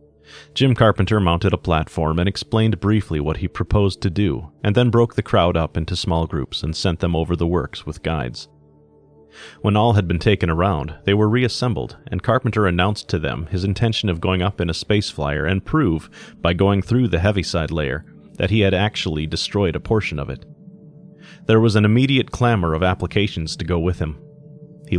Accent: American